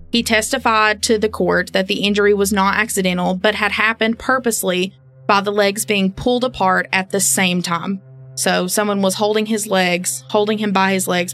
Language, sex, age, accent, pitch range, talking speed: English, female, 20-39, American, 175-210 Hz, 190 wpm